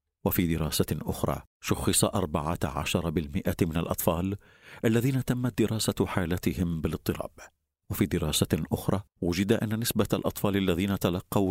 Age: 50-69